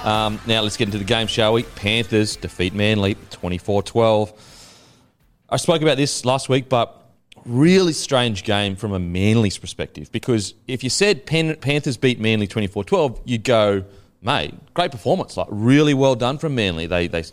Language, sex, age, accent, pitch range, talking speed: English, male, 30-49, Australian, 100-130 Hz, 170 wpm